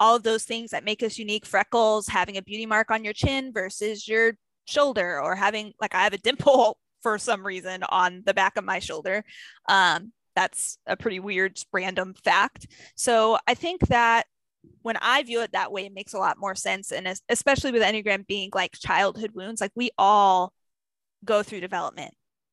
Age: 20-39